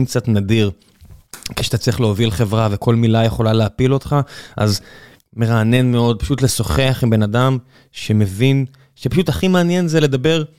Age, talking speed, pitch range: 20-39, 140 wpm, 115-155 Hz